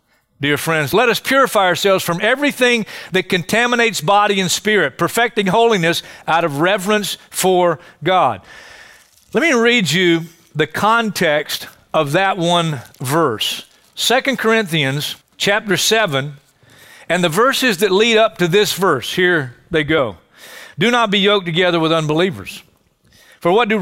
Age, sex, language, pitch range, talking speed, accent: 50-69, male, English, 175-245 Hz, 140 wpm, American